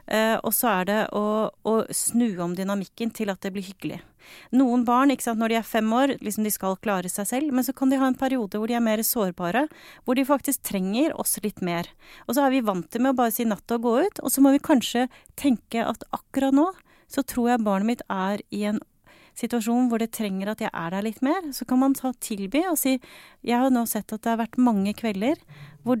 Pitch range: 195-255 Hz